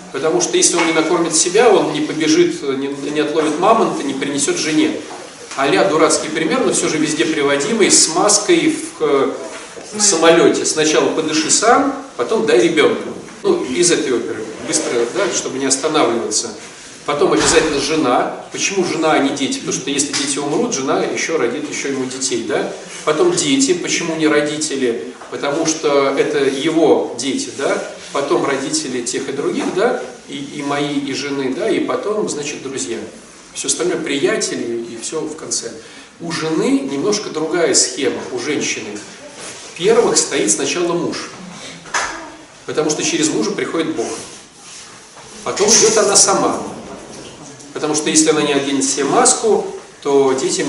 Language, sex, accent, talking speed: Russian, male, native, 155 wpm